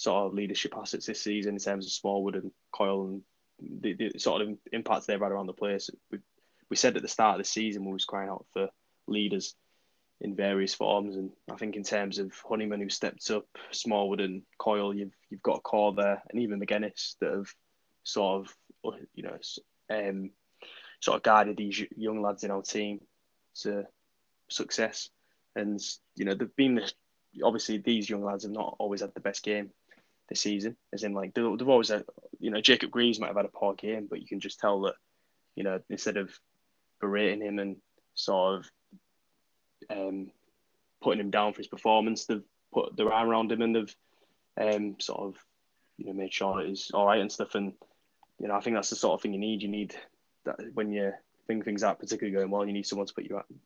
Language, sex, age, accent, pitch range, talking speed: English, male, 10-29, British, 100-105 Hz, 210 wpm